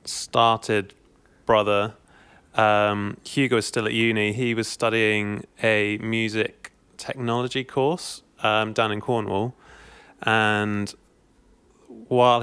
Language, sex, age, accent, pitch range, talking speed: English, male, 20-39, British, 100-115 Hz, 100 wpm